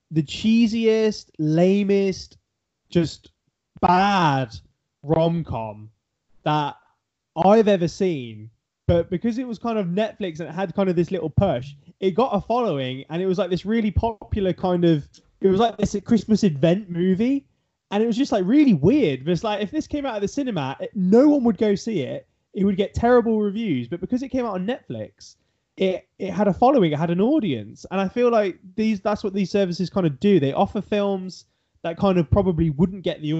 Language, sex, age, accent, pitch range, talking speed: English, male, 20-39, British, 140-200 Hz, 200 wpm